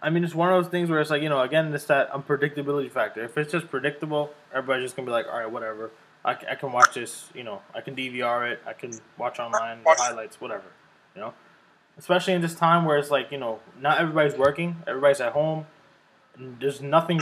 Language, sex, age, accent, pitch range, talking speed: English, male, 20-39, American, 135-165 Hz, 235 wpm